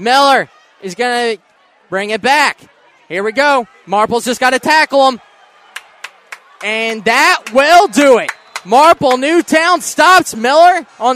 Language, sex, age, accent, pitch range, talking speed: English, male, 20-39, American, 215-255 Hz, 140 wpm